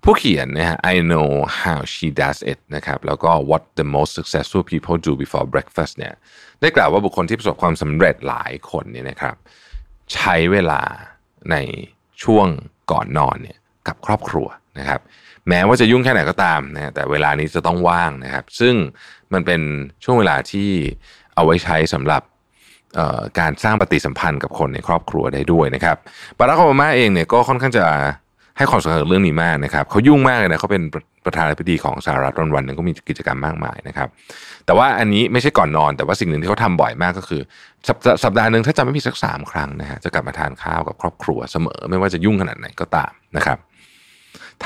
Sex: male